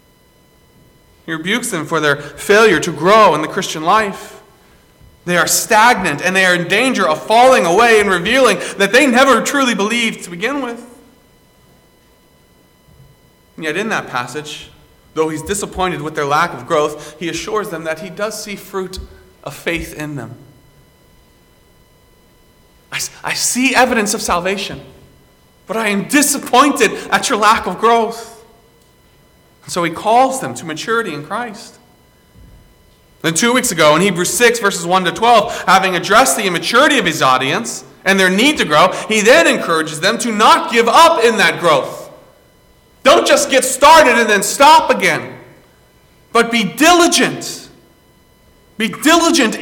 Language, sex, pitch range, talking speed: English, male, 160-235 Hz, 155 wpm